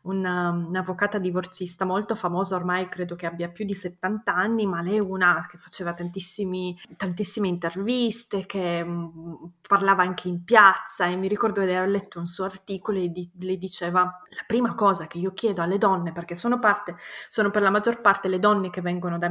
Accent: native